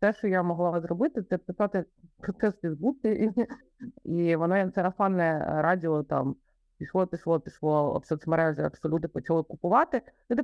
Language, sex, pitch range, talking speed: Ukrainian, female, 160-205 Hz, 160 wpm